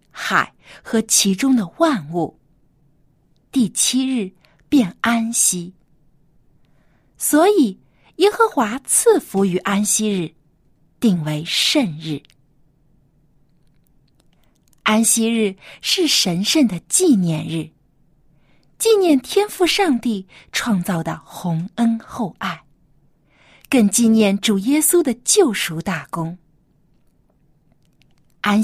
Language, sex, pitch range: Chinese, female, 160-265 Hz